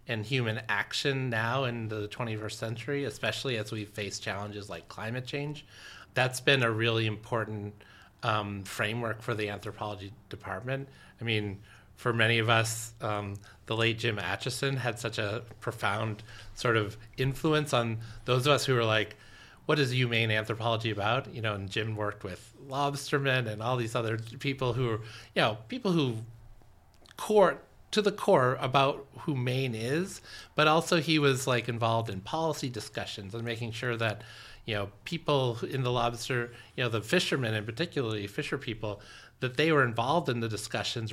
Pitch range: 105-130 Hz